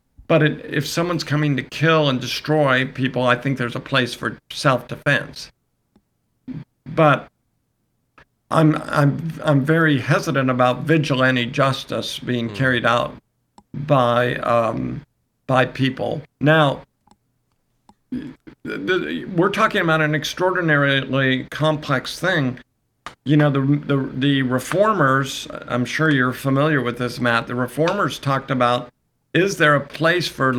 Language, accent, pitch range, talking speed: English, American, 125-150 Hz, 130 wpm